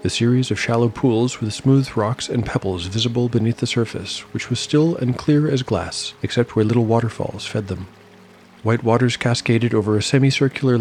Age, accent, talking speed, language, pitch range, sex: 40-59, American, 185 wpm, English, 105-125 Hz, male